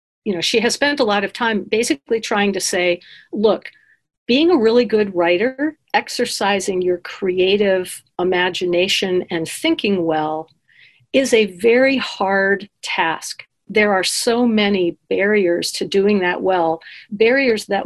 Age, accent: 50-69, American